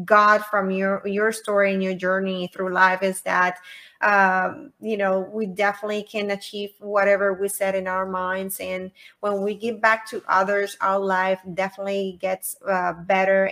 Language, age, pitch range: English, 20-39, 190-210 Hz